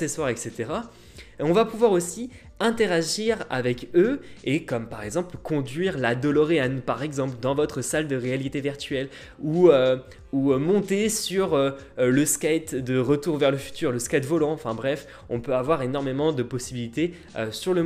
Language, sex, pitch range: French, male, 120-165 Hz